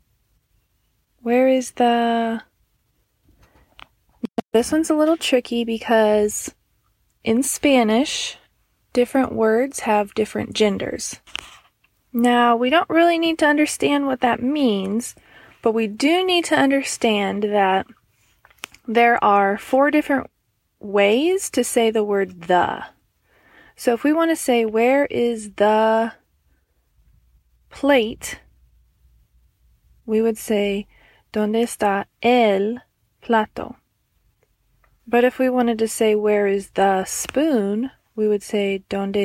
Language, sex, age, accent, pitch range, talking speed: English, female, 20-39, American, 205-250 Hz, 115 wpm